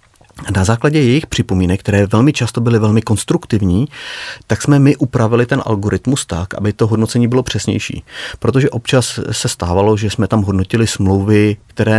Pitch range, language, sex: 95-115 Hz, Czech, male